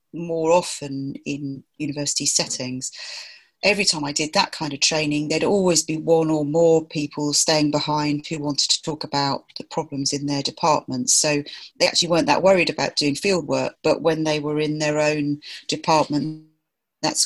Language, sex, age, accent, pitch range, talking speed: English, female, 40-59, British, 145-165 Hz, 175 wpm